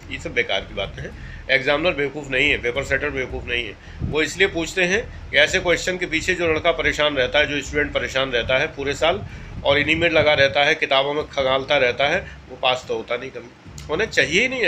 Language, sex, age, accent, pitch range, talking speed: Hindi, male, 40-59, native, 140-170 Hz, 230 wpm